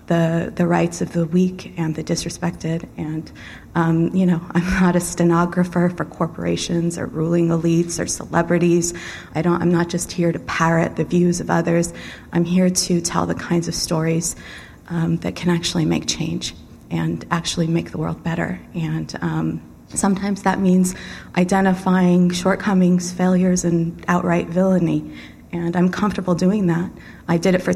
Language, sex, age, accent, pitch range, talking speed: English, female, 30-49, American, 165-190 Hz, 165 wpm